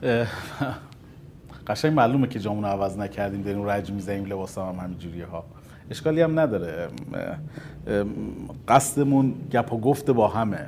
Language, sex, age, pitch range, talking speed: Persian, male, 40-59, 100-145 Hz, 130 wpm